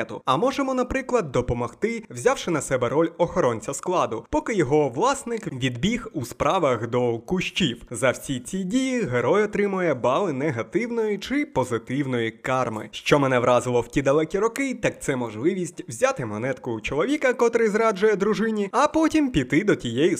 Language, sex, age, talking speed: Ukrainian, male, 20-39, 150 wpm